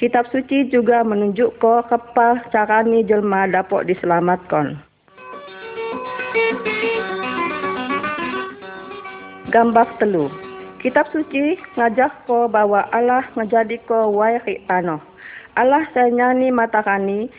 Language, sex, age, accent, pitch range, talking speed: Indonesian, female, 40-59, native, 200-245 Hz, 85 wpm